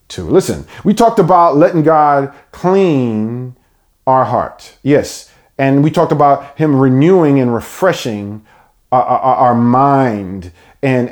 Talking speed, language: 125 wpm, English